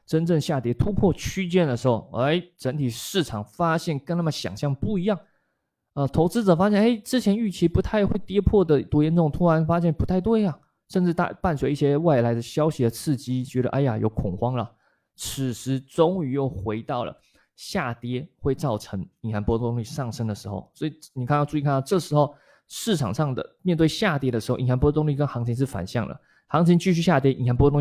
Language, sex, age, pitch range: Chinese, male, 20-39, 115-160 Hz